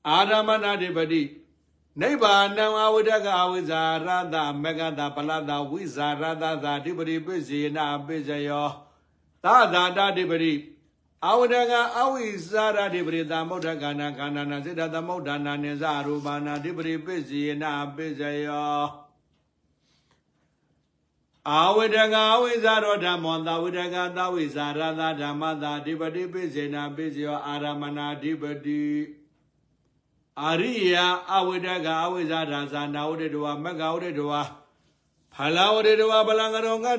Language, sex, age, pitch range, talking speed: English, male, 60-79, 145-180 Hz, 55 wpm